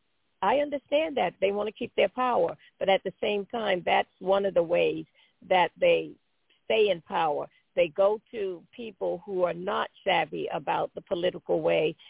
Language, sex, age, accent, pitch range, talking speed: English, female, 50-69, American, 180-235 Hz, 180 wpm